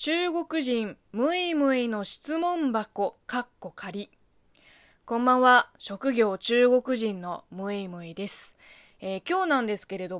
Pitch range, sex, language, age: 190-255 Hz, female, Japanese, 20-39